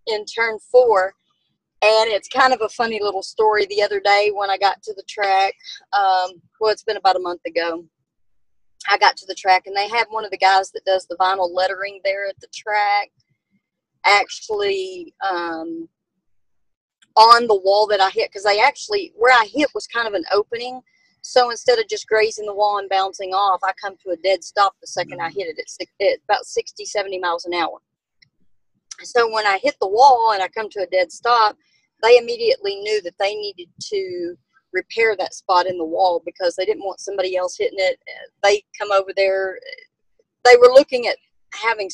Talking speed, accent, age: 200 wpm, American, 30-49